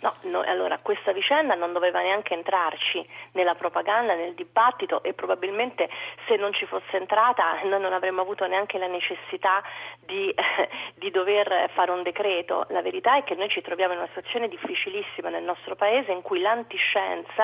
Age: 40-59